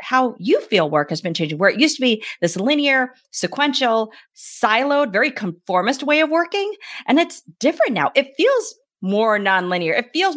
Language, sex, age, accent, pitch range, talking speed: English, female, 30-49, American, 220-315 Hz, 180 wpm